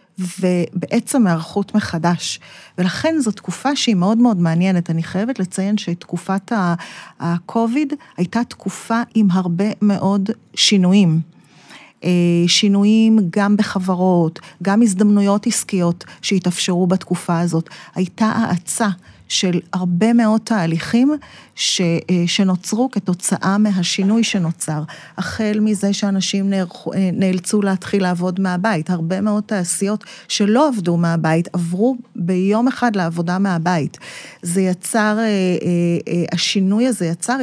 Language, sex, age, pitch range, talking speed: Hebrew, female, 30-49, 180-215 Hz, 105 wpm